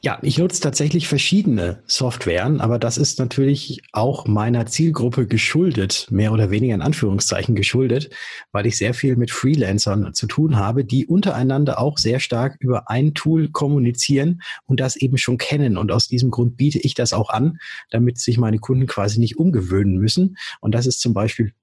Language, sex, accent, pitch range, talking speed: German, male, German, 115-145 Hz, 180 wpm